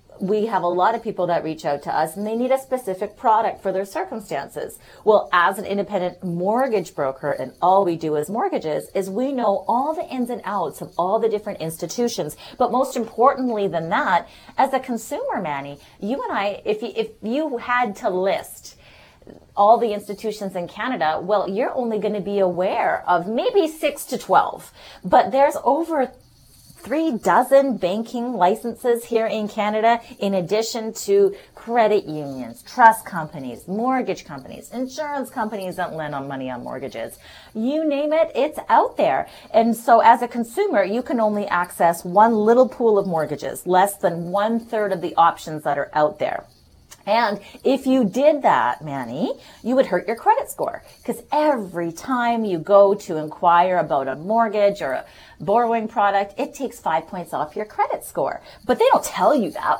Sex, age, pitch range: female, 30-49, 175-240 Hz